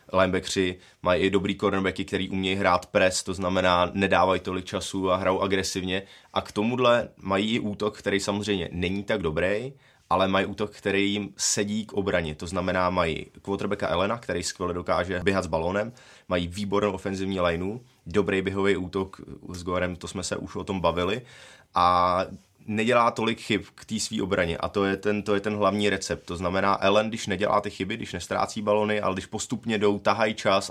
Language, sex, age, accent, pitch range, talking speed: Czech, male, 20-39, native, 95-105 Hz, 190 wpm